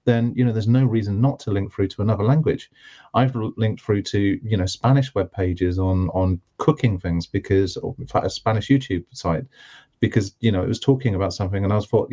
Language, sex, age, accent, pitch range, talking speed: English, male, 30-49, British, 100-125 Hz, 230 wpm